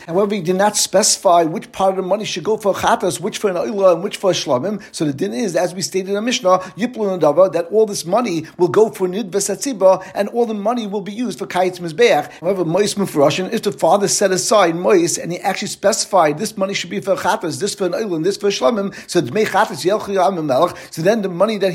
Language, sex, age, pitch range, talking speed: English, male, 60-79, 180-210 Hz, 235 wpm